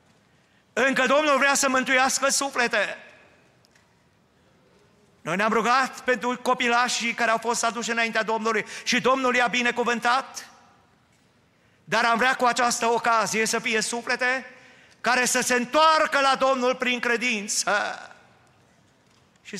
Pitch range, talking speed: 175-250 Hz, 120 wpm